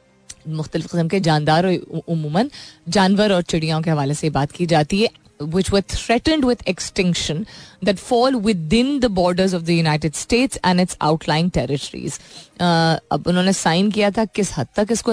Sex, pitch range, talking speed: female, 155-210 Hz, 170 wpm